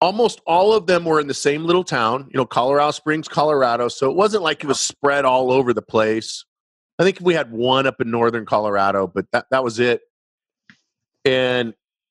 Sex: male